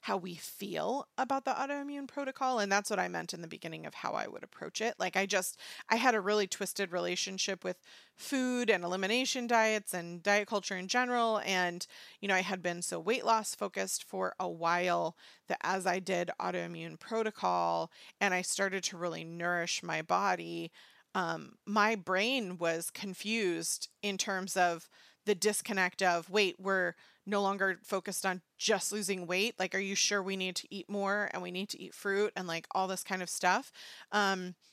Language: English